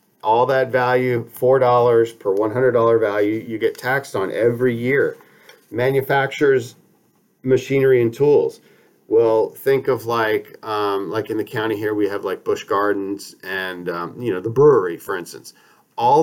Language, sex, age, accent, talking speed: English, male, 40-59, American, 150 wpm